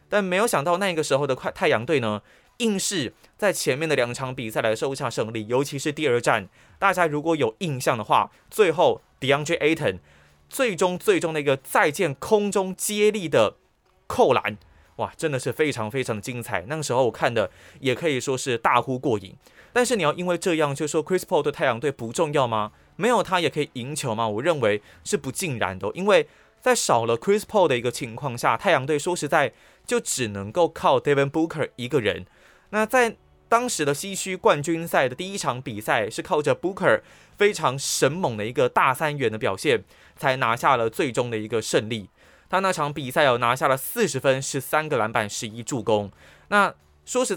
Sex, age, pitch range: male, 20-39, 120-175 Hz